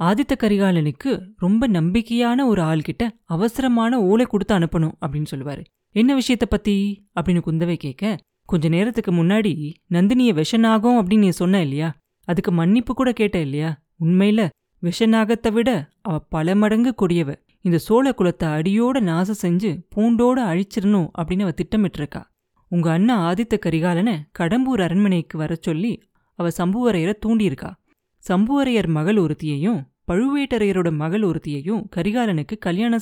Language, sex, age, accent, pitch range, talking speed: Tamil, female, 20-39, native, 170-225 Hz, 125 wpm